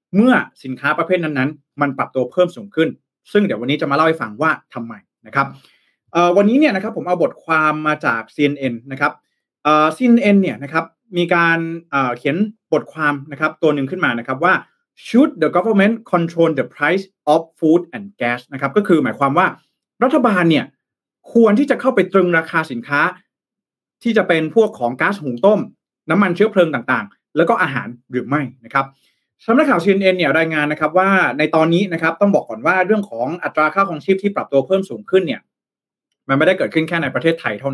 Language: Thai